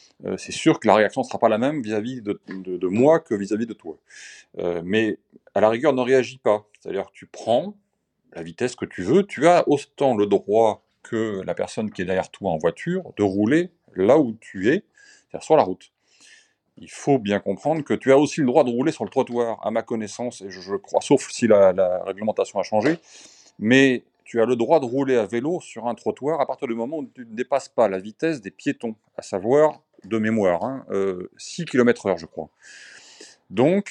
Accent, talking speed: French, 225 wpm